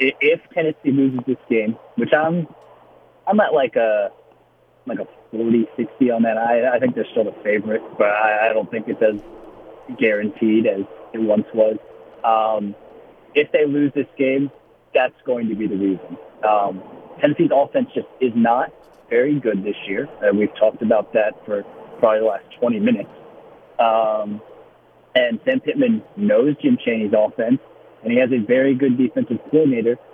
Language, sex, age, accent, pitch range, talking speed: English, male, 30-49, American, 115-150 Hz, 165 wpm